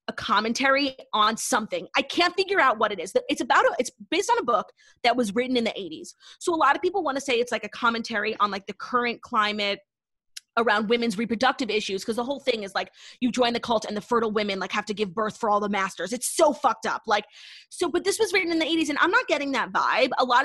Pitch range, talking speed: 205-295 Hz, 265 wpm